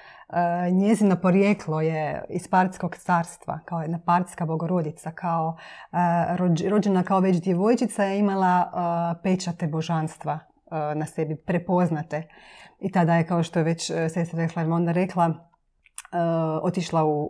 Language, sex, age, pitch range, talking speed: Croatian, female, 30-49, 165-185 Hz, 140 wpm